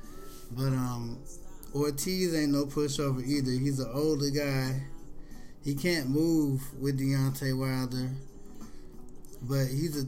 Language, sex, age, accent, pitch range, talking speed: English, male, 20-39, American, 130-160 Hz, 120 wpm